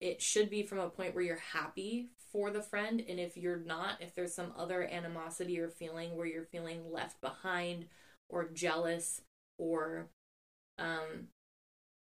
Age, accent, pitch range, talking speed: 10-29, American, 165-185 Hz, 160 wpm